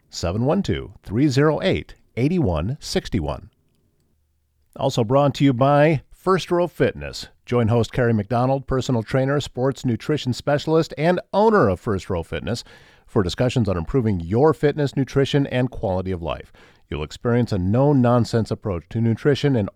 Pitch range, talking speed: 105-140 Hz, 130 wpm